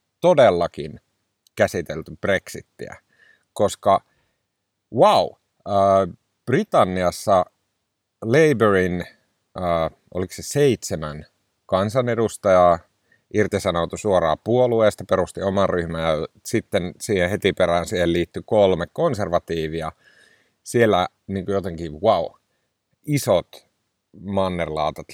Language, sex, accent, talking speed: Finnish, male, native, 75 wpm